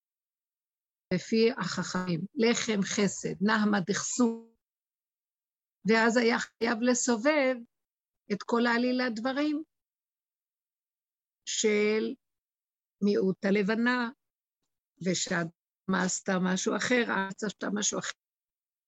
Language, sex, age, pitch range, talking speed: Hebrew, female, 60-79, 190-240 Hz, 75 wpm